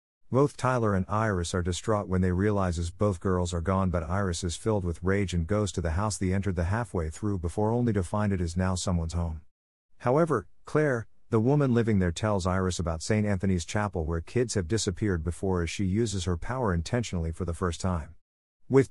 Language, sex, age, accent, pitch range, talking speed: English, male, 50-69, American, 90-110 Hz, 210 wpm